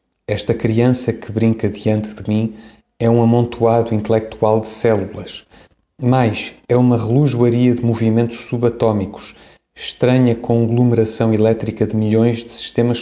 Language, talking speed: Portuguese, 125 wpm